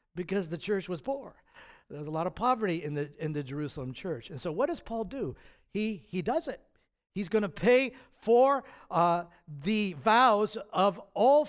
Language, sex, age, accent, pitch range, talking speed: English, male, 50-69, American, 160-255 Hz, 195 wpm